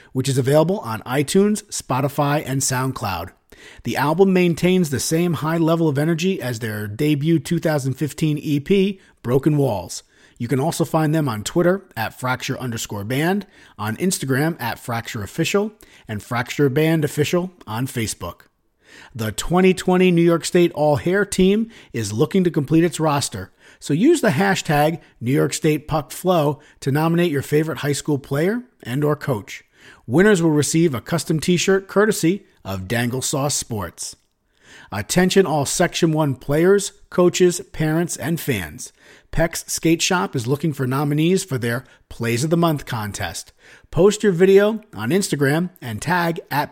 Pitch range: 130-180 Hz